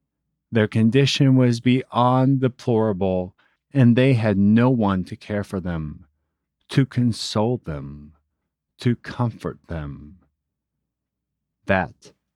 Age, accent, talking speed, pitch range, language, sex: 40-59, American, 100 wpm, 85-115 Hz, English, male